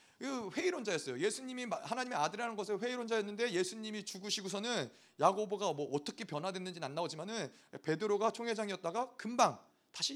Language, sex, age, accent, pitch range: Korean, male, 30-49, native, 175-250 Hz